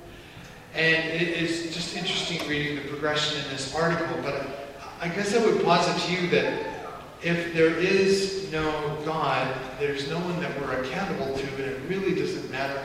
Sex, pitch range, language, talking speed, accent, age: male, 140-165 Hz, English, 170 wpm, American, 40-59